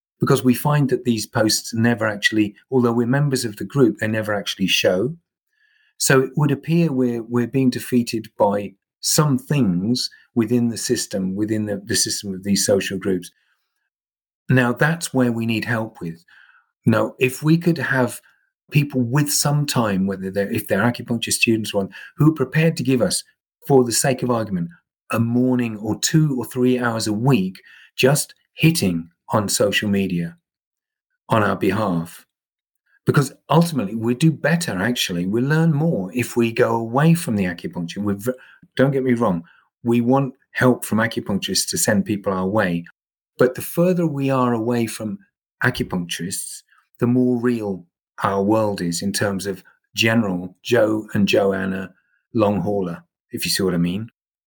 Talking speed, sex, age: 165 wpm, male, 40-59